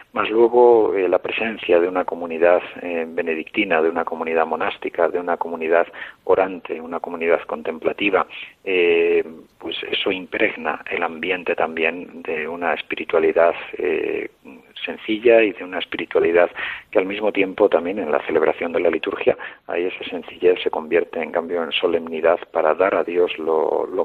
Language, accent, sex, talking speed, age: Spanish, Spanish, male, 155 wpm, 50-69